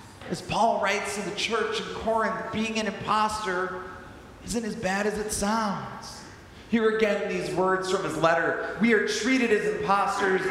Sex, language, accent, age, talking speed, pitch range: male, English, American, 40-59, 165 wpm, 155-215 Hz